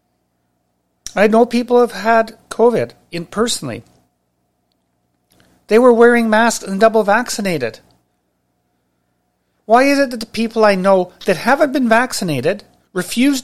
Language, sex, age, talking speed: English, male, 40-59, 120 wpm